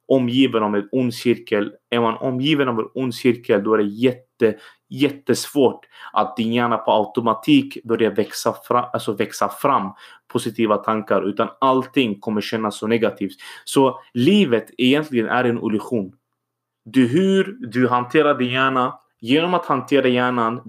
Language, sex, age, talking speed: Swedish, male, 20-39, 150 wpm